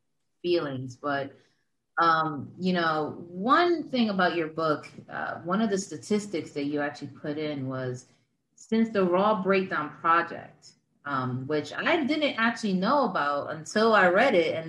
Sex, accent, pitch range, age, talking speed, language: female, American, 150-225 Hz, 30-49, 155 wpm, English